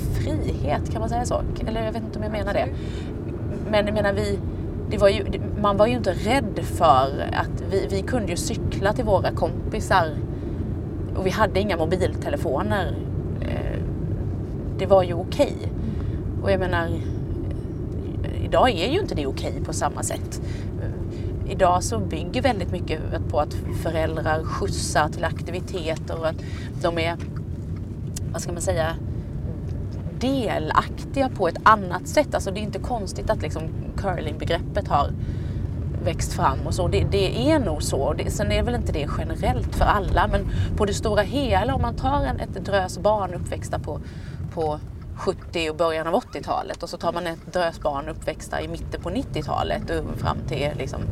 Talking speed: 165 wpm